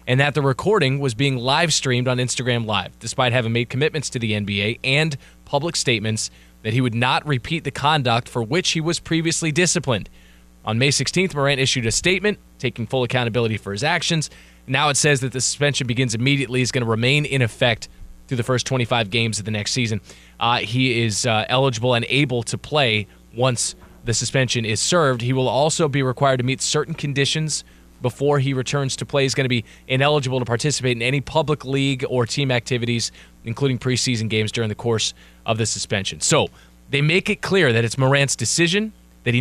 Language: English